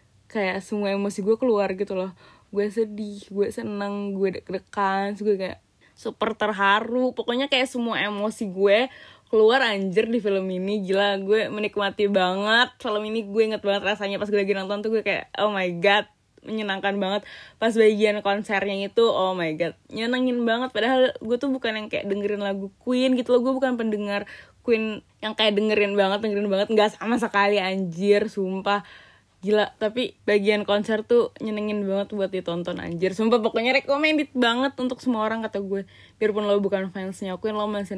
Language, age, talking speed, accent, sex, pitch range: Indonesian, 20-39, 175 wpm, native, female, 195-225 Hz